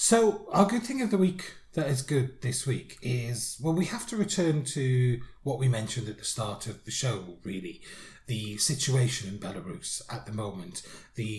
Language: English